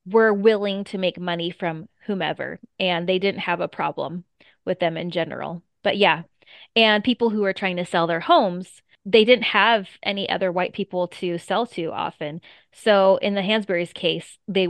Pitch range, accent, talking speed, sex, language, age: 185-225 Hz, American, 185 wpm, female, English, 20-39